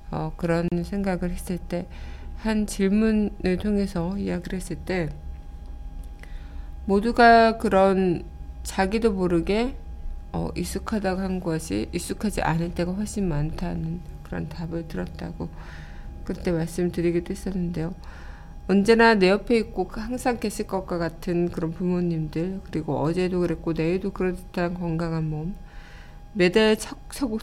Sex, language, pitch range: female, Korean, 160-195 Hz